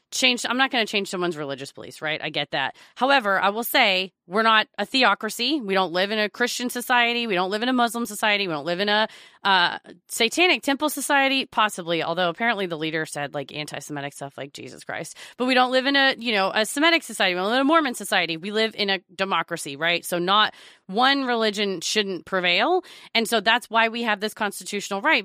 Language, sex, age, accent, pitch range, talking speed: English, female, 30-49, American, 175-225 Hz, 225 wpm